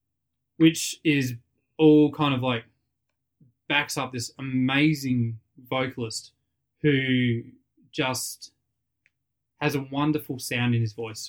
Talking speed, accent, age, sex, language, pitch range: 105 wpm, Australian, 20-39, male, English, 115-135 Hz